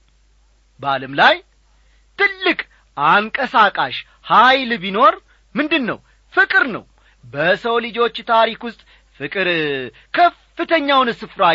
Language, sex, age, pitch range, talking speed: Amharic, male, 30-49, 160-265 Hz, 85 wpm